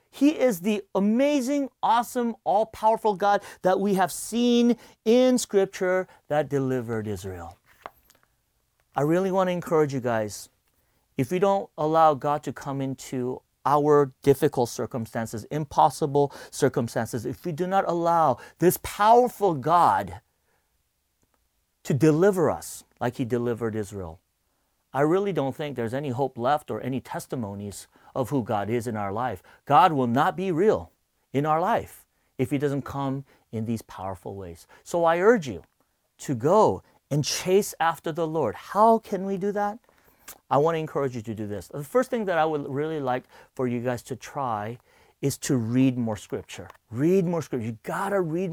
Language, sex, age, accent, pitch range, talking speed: English, male, 40-59, American, 125-195 Hz, 165 wpm